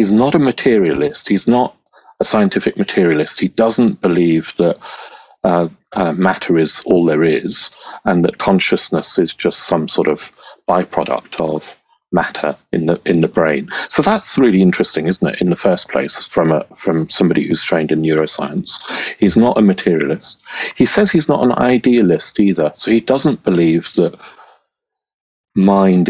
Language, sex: English, male